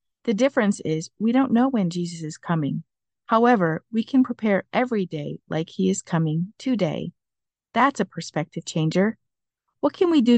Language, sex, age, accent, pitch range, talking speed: English, female, 50-69, American, 170-230 Hz, 170 wpm